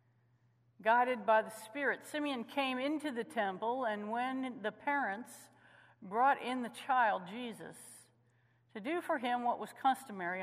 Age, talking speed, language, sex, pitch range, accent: 50-69, 145 wpm, English, female, 170-235 Hz, American